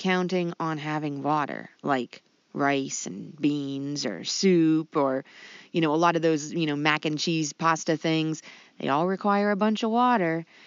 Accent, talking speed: American, 175 wpm